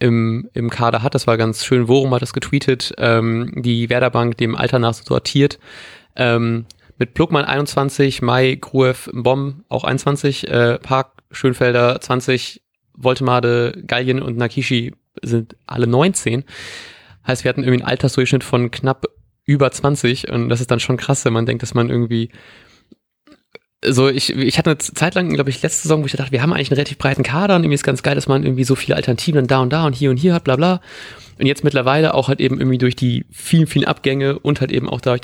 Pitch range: 120-140 Hz